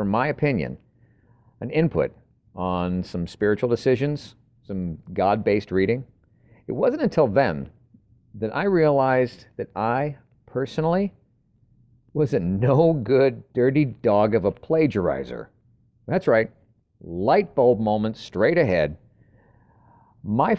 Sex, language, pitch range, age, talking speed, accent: male, English, 110-145 Hz, 50-69, 110 wpm, American